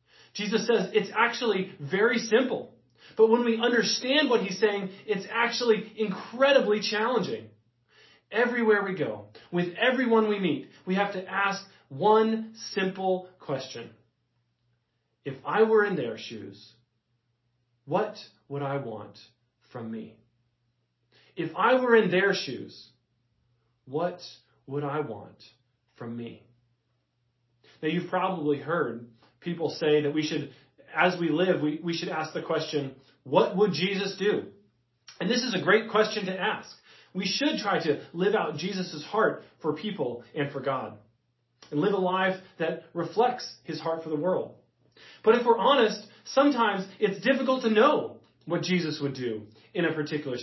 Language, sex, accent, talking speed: English, male, American, 150 wpm